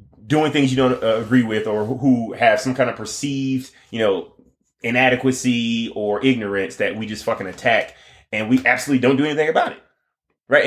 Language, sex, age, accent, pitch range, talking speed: English, male, 20-39, American, 120-150 Hz, 185 wpm